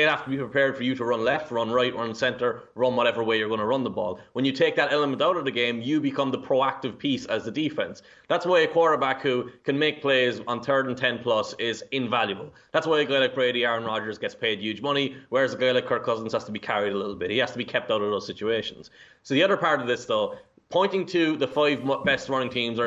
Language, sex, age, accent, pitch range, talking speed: English, male, 20-39, Irish, 120-145 Hz, 275 wpm